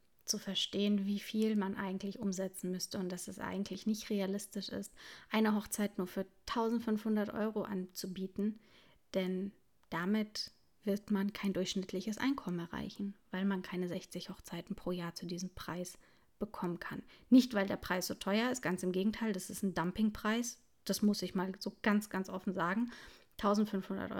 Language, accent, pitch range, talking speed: German, German, 190-220 Hz, 165 wpm